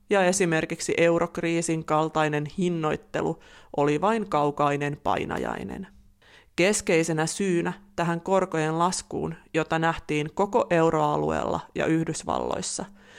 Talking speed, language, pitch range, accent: 90 wpm, Finnish, 155-185 Hz, native